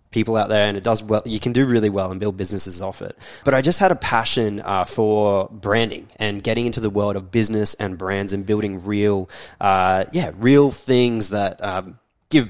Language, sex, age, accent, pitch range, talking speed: English, male, 20-39, Australian, 100-115 Hz, 215 wpm